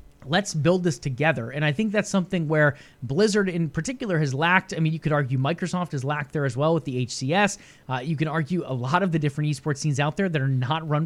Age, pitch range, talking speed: 20-39, 145-185 Hz, 250 wpm